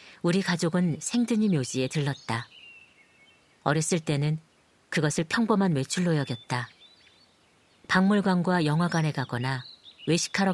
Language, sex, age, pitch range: Korean, female, 40-59, 135-180 Hz